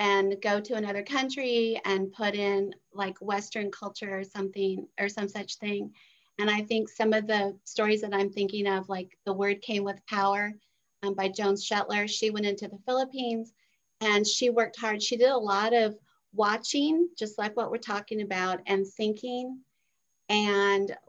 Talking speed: 175 wpm